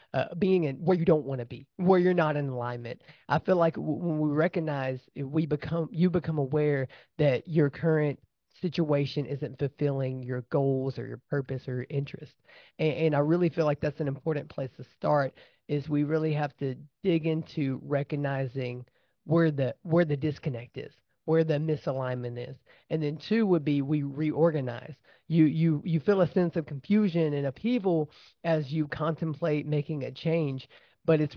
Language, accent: English, American